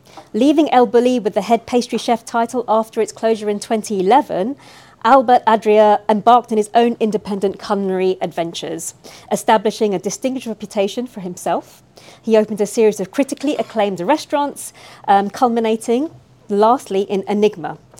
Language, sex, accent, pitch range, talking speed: English, female, British, 190-230 Hz, 140 wpm